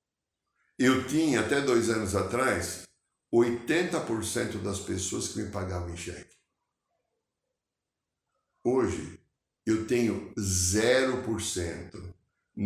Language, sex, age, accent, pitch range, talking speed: Portuguese, male, 60-79, Brazilian, 90-120 Hz, 85 wpm